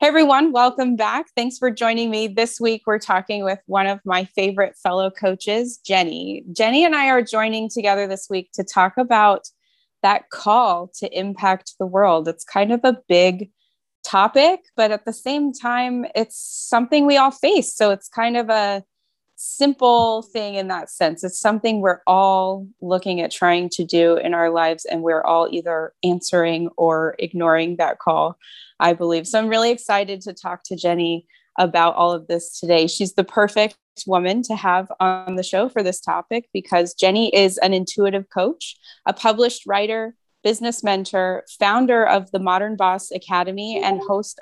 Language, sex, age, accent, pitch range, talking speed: English, female, 20-39, American, 180-225 Hz, 175 wpm